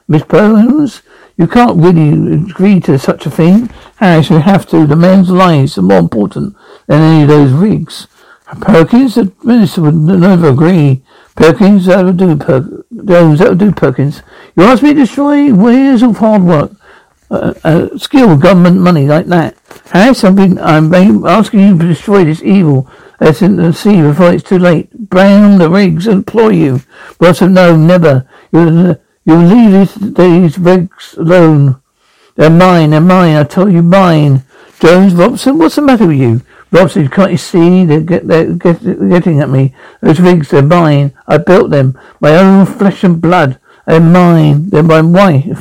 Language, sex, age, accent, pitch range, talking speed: English, male, 60-79, British, 155-195 Hz, 175 wpm